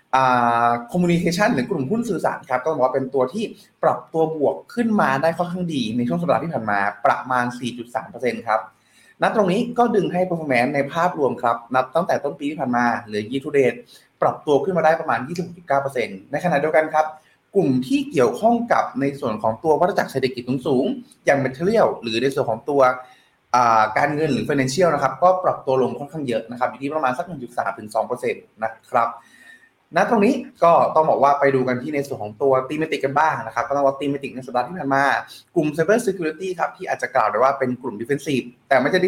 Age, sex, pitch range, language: 20-39, male, 125-165 Hz, Thai